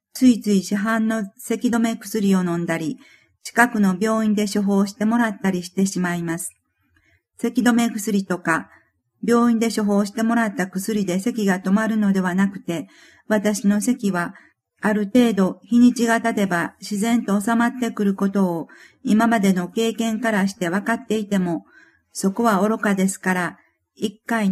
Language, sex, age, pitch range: Japanese, female, 50-69, 190-225 Hz